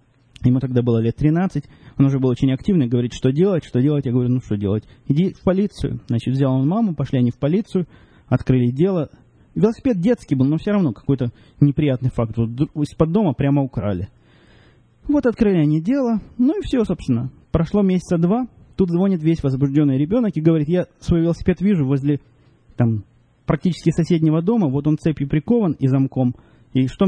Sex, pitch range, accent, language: male, 130-170 Hz, native, Russian